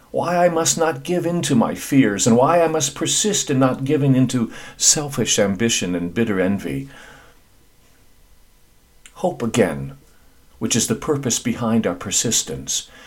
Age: 50-69